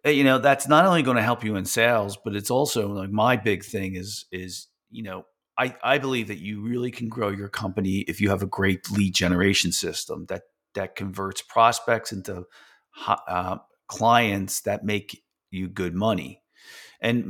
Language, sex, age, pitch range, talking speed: English, male, 40-59, 95-115 Hz, 185 wpm